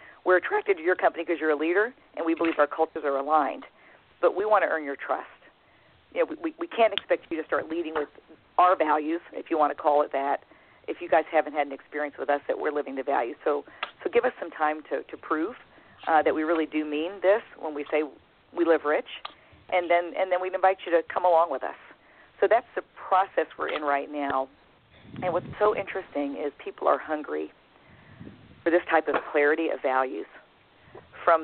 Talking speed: 220 wpm